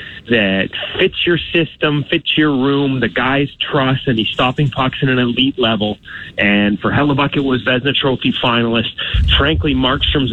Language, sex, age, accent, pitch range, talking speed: English, male, 30-49, American, 115-150 Hz, 165 wpm